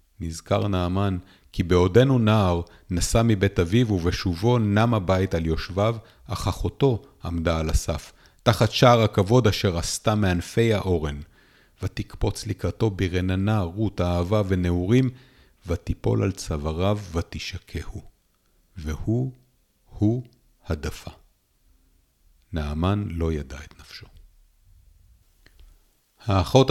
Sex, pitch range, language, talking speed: male, 85-105 Hz, Hebrew, 100 wpm